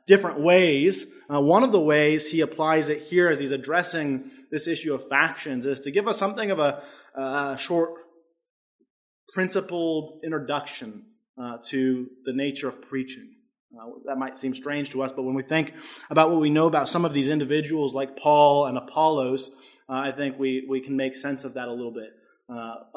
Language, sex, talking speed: English, male, 190 wpm